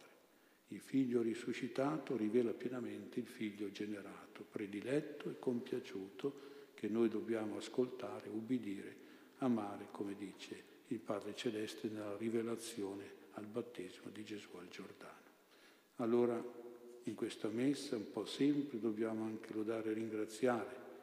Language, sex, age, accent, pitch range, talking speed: Italian, male, 60-79, native, 110-130 Hz, 120 wpm